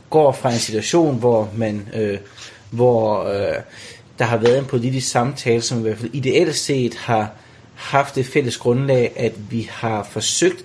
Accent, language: native, Danish